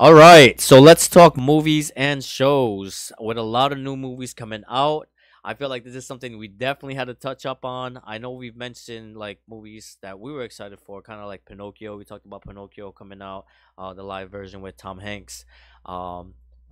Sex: male